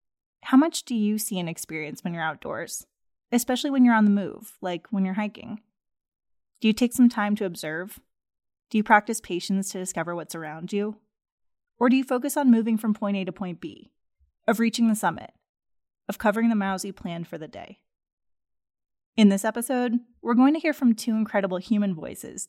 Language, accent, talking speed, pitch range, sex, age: English, American, 195 wpm, 175-230 Hz, female, 20-39